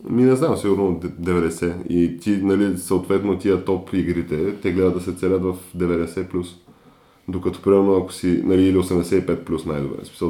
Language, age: Bulgarian, 10-29